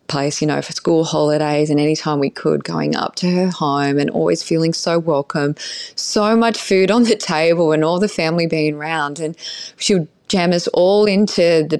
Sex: female